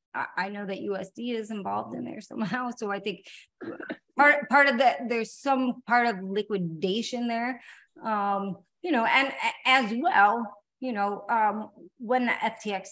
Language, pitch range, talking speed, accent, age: English, 185-235 Hz, 160 wpm, American, 30-49